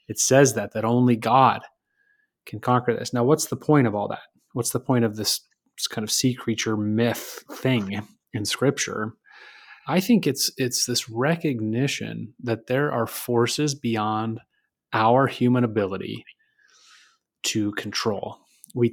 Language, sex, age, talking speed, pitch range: English, male, 30-49, 145 wpm, 110-135 Hz